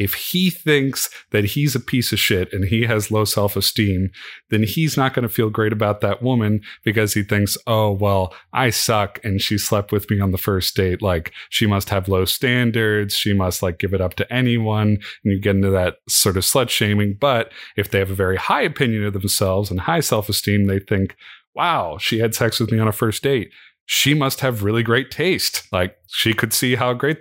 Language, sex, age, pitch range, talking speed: English, male, 30-49, 100-115 Hz, 220 wpm